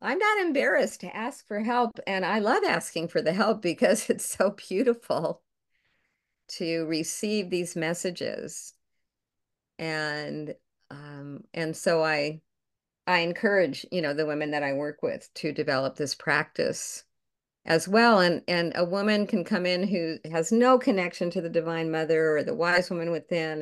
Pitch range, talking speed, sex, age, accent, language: 160-210 Hz, 160 wpm, female, 50-69, American, English